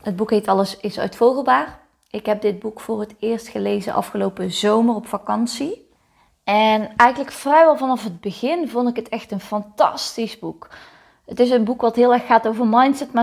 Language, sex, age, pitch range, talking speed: Dutch, female, 20-39, 200-230 Hz, 190 wpm